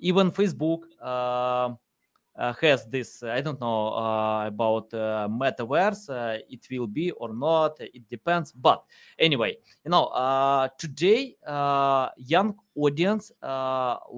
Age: 20-39